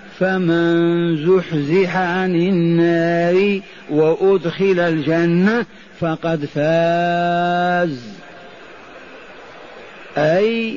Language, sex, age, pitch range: Arabic, male, 50-69, 165-195 Hz